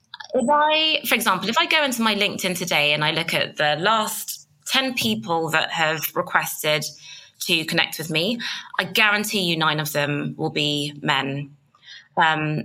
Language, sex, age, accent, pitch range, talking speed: English, female, 20-39, British, 165-215 Hz, 170 wpm